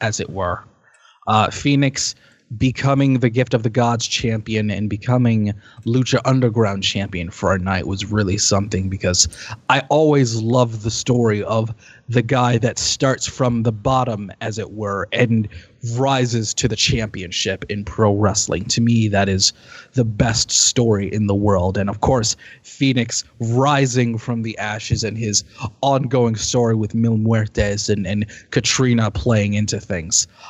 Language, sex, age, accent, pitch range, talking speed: English, male, 20-39, American, 105-135 Hz, 155 wpm